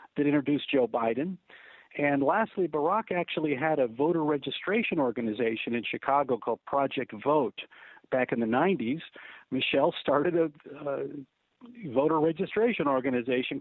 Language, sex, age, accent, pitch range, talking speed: English, male, 50-69, American, 130-155 Hz, 130 wpm